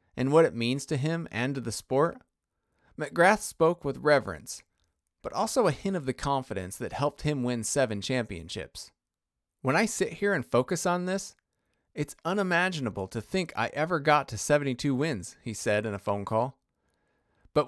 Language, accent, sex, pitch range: English, American, male, 115-160 Hz